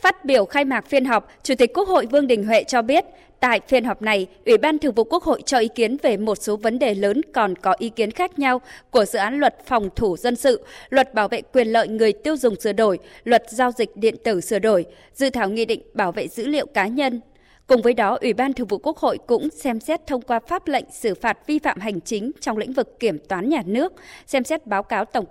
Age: 20-39